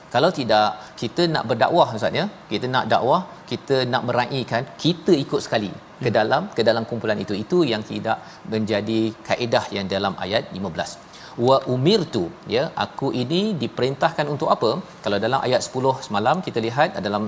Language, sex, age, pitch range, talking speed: Malayalam, male, 40-59, 115-155 Hz, 165 wpm